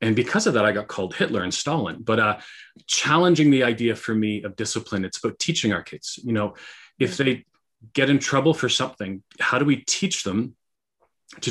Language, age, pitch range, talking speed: English, 30-49, 105-135 Hz, 205 wpm